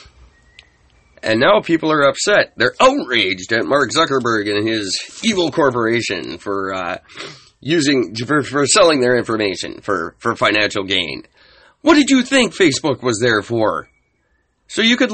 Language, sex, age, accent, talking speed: English, male, 30-49, American, 145 wpm